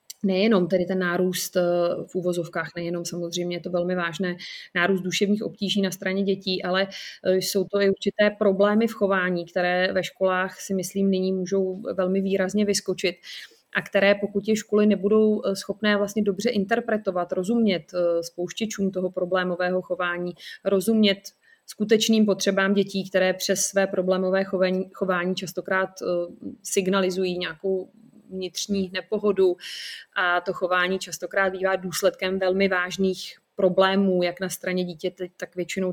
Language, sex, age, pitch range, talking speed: Czech, female, 30-49, 180-195 Hz, 130 wpm